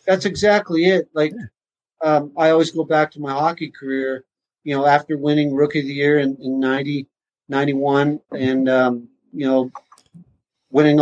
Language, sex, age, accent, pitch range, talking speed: English, male, 50-69, American, 135-160 Hz, 165 wpm